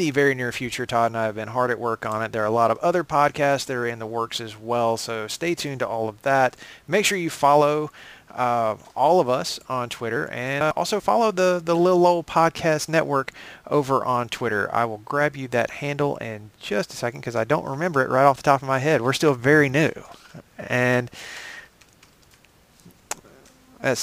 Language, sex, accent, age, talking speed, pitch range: English, male, American, 30-49, 215 wpm, 115-155 Hz